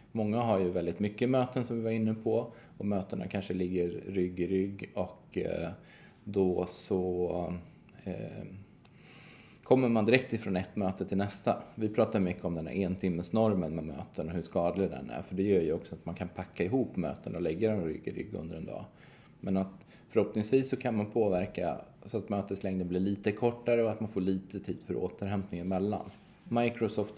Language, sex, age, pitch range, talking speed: Swedish, male, 20-39, 90-110 Hz, 190 wpm